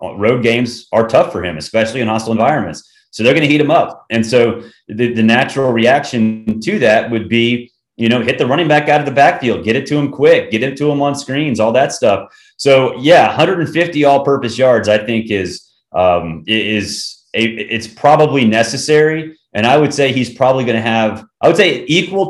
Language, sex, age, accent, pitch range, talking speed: English, male, 30-49, American, 110-140 Hz, 215 wpm